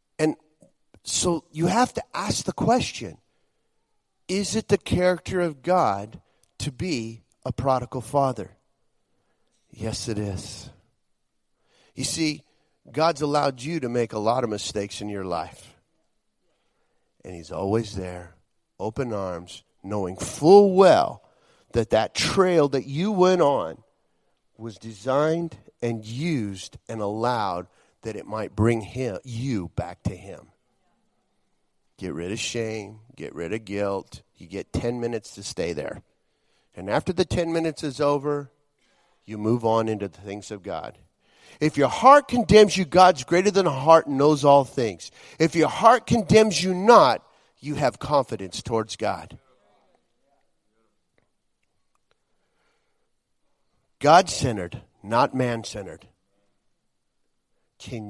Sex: male